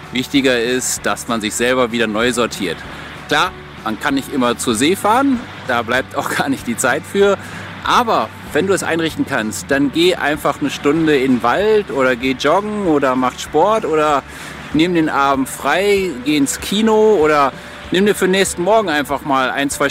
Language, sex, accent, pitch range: German, male, German, 130-195 Hz